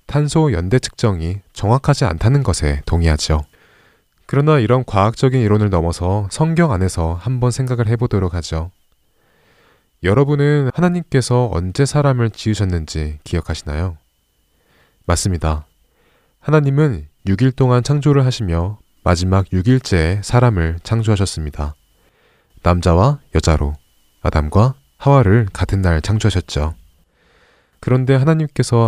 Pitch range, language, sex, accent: 80-130 Hz, Korean, male, native